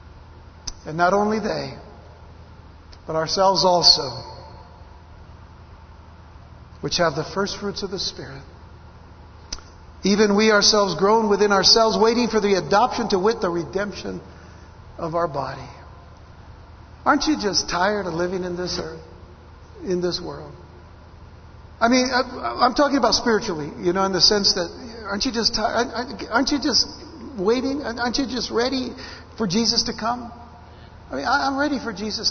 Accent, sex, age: American, male, 60-79